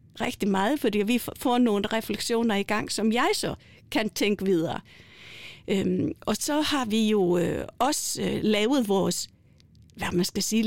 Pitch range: 195-245 Hz